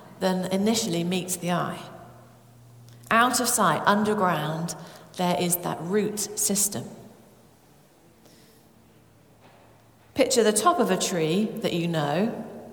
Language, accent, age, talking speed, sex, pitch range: English, British, 40-59, 110 wpm, female, 180-235 Hz